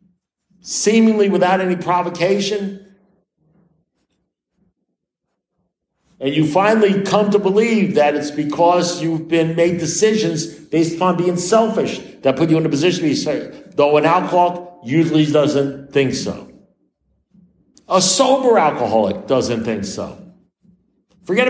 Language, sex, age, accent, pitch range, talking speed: English, male, 60-79, American, 140-190 Hz, 125 wpm